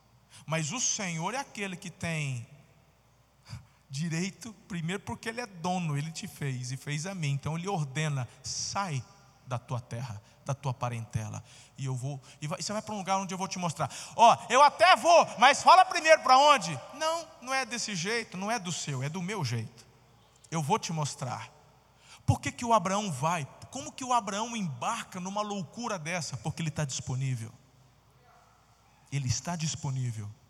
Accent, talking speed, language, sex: Brazilian, 180 wpm, Portuguese, male